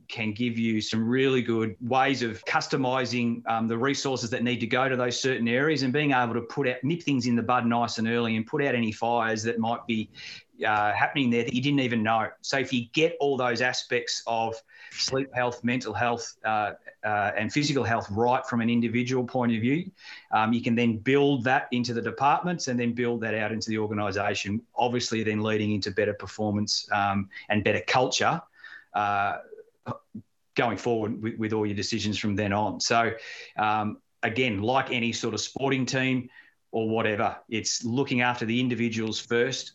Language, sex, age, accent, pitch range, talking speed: English, male, 30-49, Australian, 110-125 Hz, 190 wpm